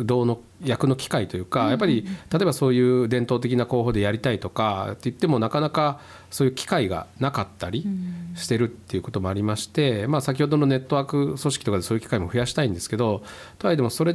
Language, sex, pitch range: Japanese, male, 100-130 Hz